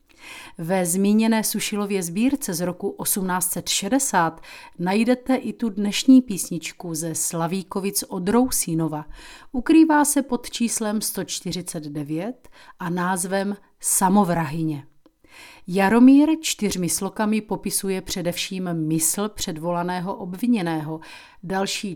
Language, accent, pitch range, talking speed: Czech, native, 170-235 Hz, 90 wpm